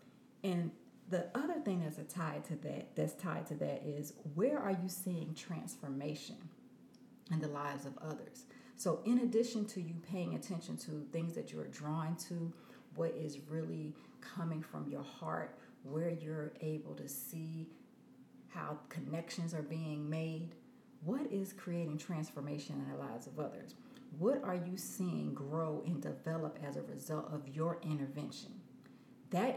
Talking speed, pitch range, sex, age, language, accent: 155 wpm, 155-190 Hz, female, 40-59, English, American